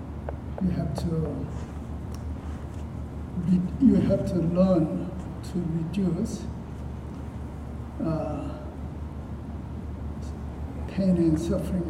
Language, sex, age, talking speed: English, male, 60-79, 65 wpm